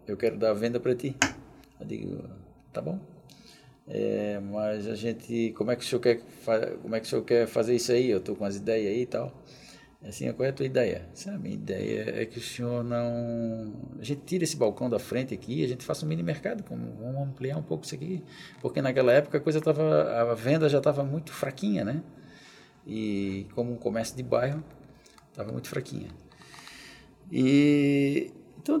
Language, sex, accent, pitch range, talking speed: Portuguese, male, Brazilian, 110-135 Hz, 205 wpm